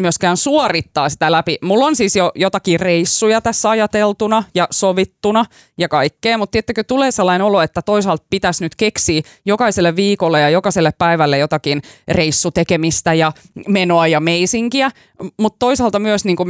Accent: native